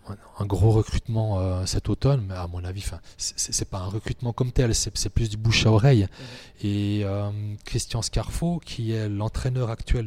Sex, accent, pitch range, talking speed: male, French, 100-120 Hz, 190 wpm